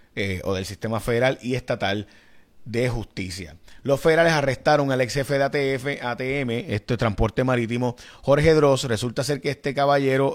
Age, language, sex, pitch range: 30-49, Spanish, male, 105-130 Hz